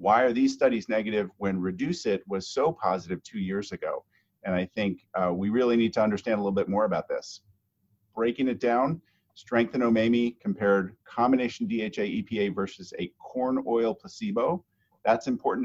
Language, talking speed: English, 175 wpm